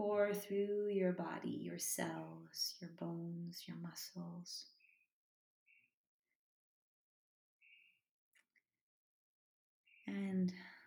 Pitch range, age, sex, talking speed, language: 175-215 Hz, 30-49, female, 60 wpm, Swedish